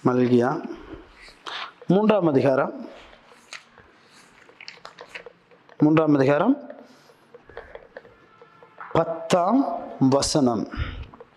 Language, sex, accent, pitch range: Tamil, male, native, 175-275 Hz